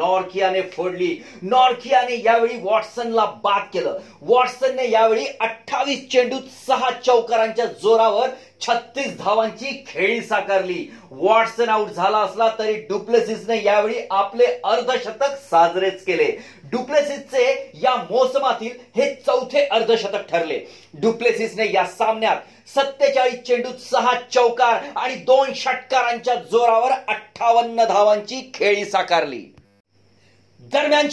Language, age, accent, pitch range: Marathi, 30-49, native, 215-255 Hz